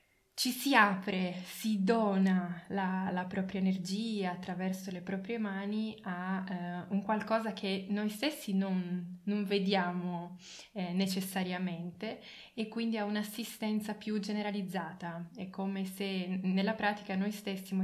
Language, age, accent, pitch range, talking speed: Italian, 20-39, native, 185-205 Hz, 130 wpm